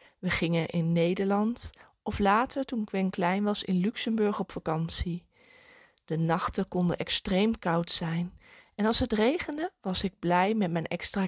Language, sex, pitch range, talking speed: Dutch, female, 170-215 Hz, 160 wpm